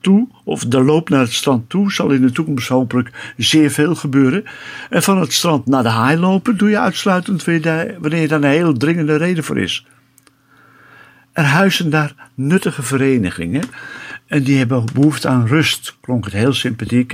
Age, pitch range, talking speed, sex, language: 60-79, 120-150 Hz, 180 wpm, male, Dutch